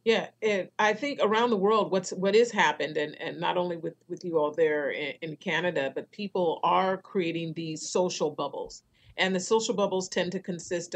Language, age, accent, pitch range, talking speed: English, 40-59, American, 160-220 Hz, 205 wpm